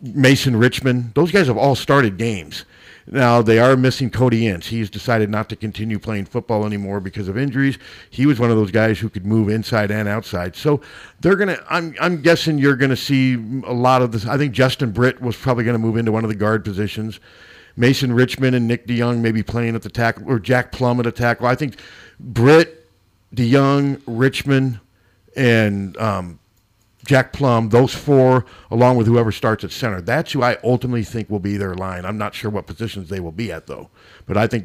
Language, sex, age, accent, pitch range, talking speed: English, male, 50-69, American, 105-125 Hz, 210 wpm